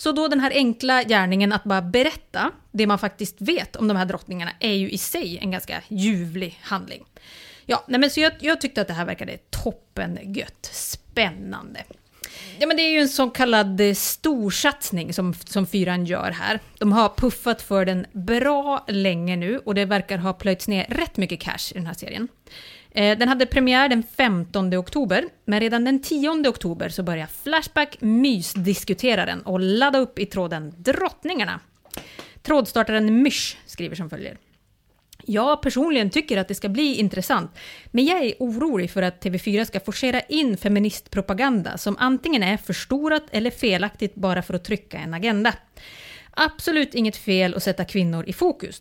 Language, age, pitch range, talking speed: English, 30-49, 190-260 Hz, 170 wpm